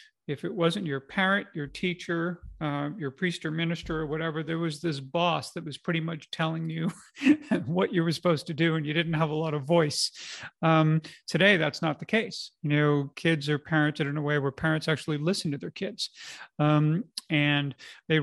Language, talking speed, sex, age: English, 205 wpm, male, 40-59